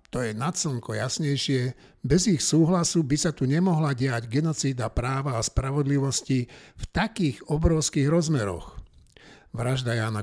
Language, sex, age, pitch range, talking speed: Slovak, male, 60-79, 120-155 Hz, 130 wpm